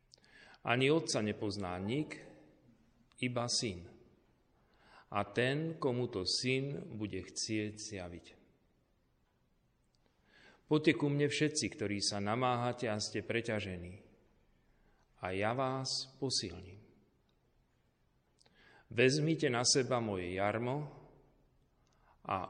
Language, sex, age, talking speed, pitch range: Slovak, male, 40-59, 85 wpm, 95-125 Hz